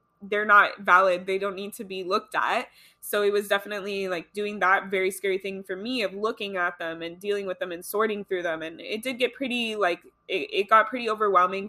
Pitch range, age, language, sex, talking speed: 185-210 Hz, 20-39, English, female, 230 wpm